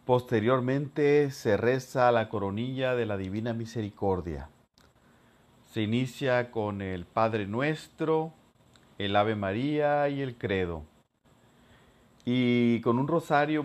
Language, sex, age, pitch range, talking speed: Spanish, male, 40-59, 110-135 Hz, 110 wpm